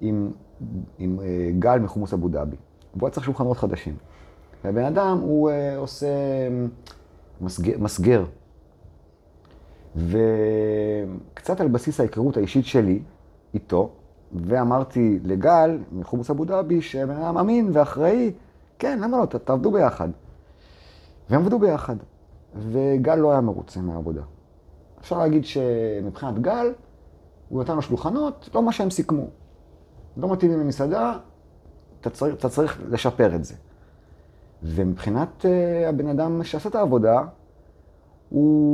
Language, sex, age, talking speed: Hebrew, male, 30-49, 115 wpm